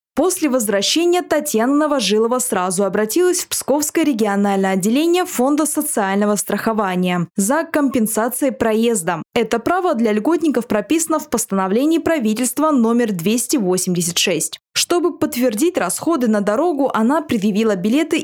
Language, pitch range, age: Russian, 205-305 Hz, 20-39